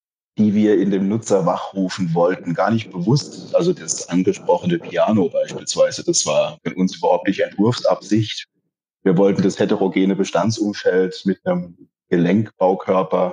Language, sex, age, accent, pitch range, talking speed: German, male, 30-49, German, 95-115 Hz, 135 wpm